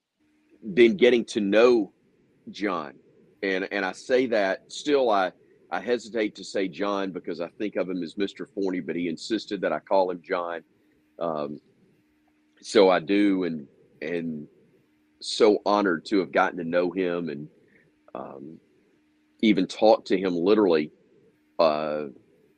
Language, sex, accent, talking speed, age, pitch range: English, male, American, 145 wpm, 40-59, 75-95 Hz